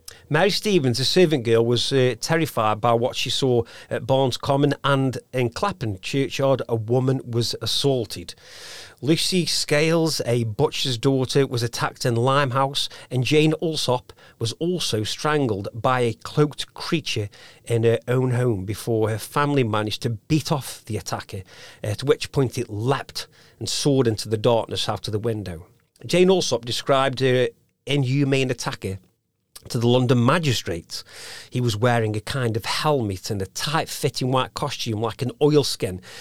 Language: English